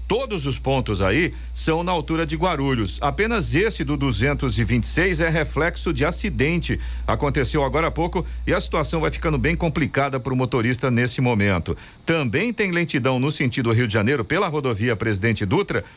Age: 50-69